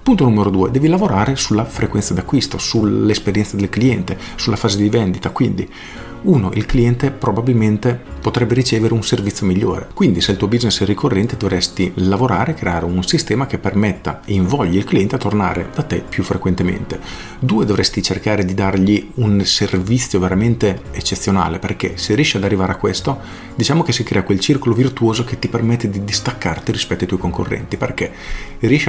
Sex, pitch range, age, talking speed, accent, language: male, 95-120 Hz, 40-59, 175 wpm, native, Italian